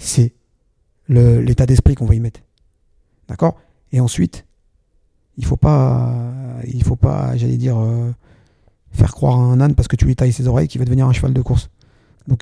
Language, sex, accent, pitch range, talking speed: French, male, French, 120-145 Hz, 195 wpm